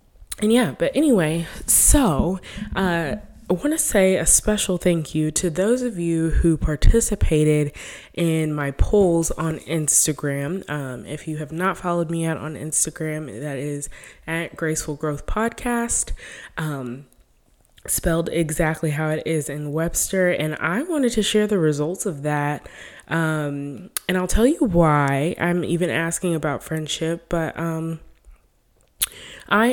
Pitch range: 155-190 Hz